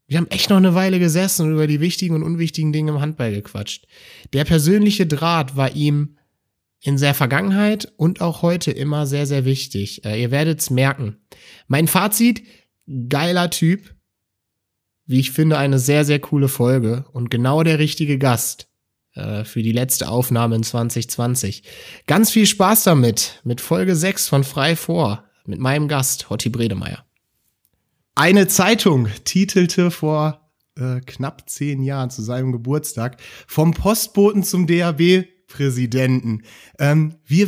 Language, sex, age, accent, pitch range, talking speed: German, male, 30-49, German, 130-170 Hz, 145 wpm